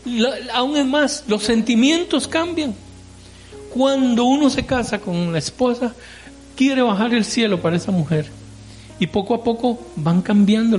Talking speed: 155 wpm